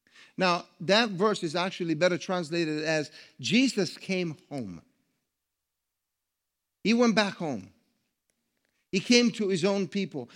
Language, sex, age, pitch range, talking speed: English, male, 50-69, 150-195 Hz, 120 wpm